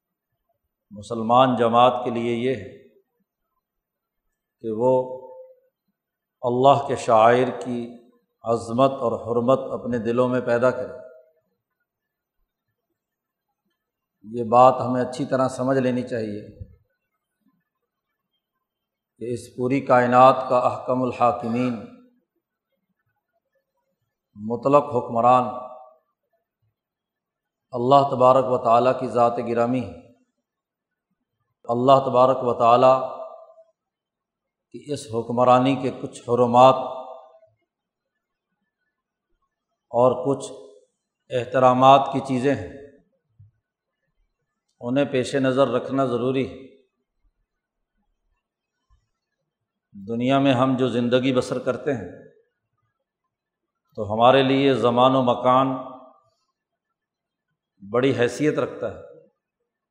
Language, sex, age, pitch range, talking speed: Urdu, male, 50-69, 120-140 Hz, 85 wpm